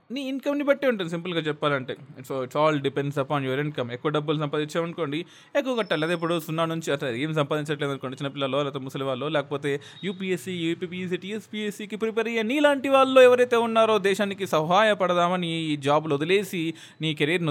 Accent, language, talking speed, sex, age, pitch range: native, Telugu, 160 wpm, male, 20-39, 140-185 Hz